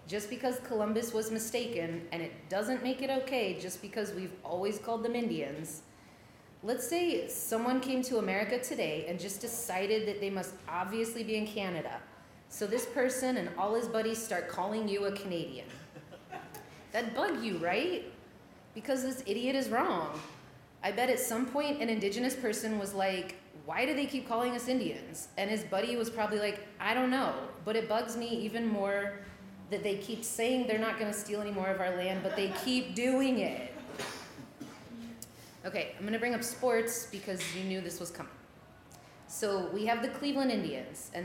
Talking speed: 180 wpm